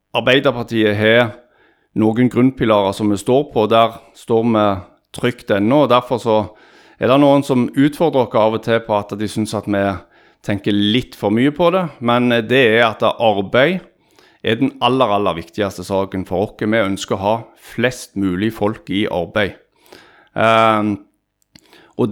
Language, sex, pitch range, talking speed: English, male, 105-125 Hz, 160 wpm